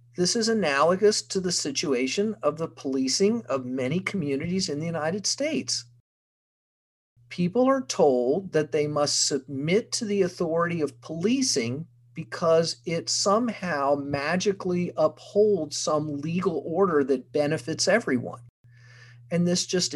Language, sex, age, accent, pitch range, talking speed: English, male, 40-59, American, 125-185 Hz, 125 wpm